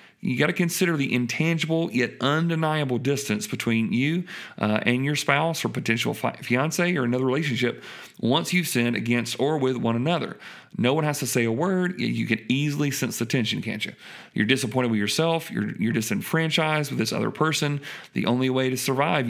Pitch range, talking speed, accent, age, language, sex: 115-150 Hz, 185 wpm, American, 40-59, English, male